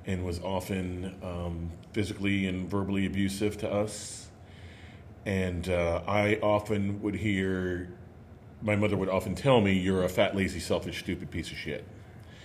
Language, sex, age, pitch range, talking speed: English, male, 40-59, 90-110 Hz, 150 wpm